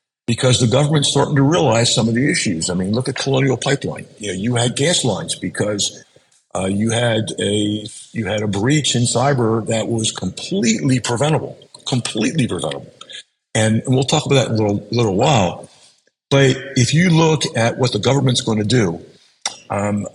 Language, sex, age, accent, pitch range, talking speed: English, male, 50-69, American, 105-130 Hz, 180 wpm